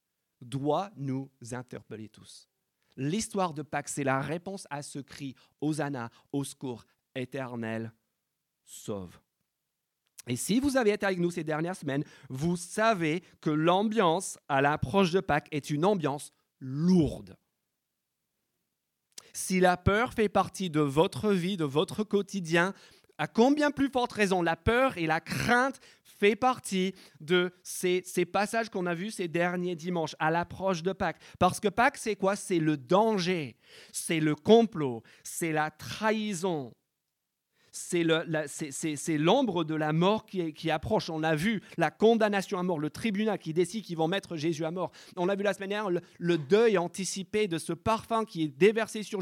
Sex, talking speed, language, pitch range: male, 170 wpm, French, 155-210 Hz